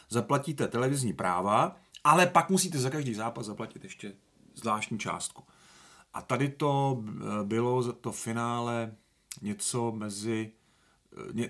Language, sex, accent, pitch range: Czech, male, native, 115-140 Hz